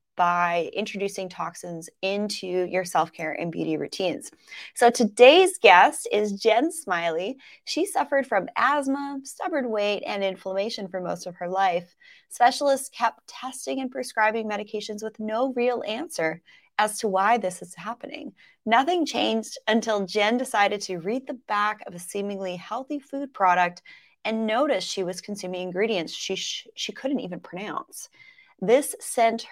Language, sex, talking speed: English, female, 150 wpm